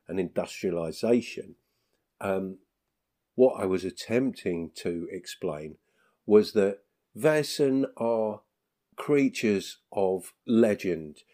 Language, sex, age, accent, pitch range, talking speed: English, male, 50-69, British, 90-110 Hz, 85 wpm